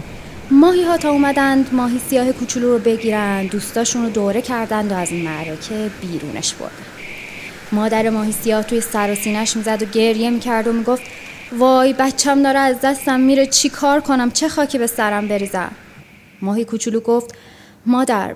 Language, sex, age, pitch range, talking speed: Persian, female, 20-39, 215-280 Hz, 155 wpm